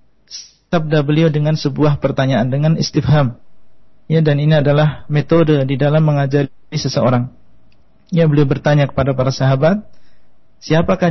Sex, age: male, 40-59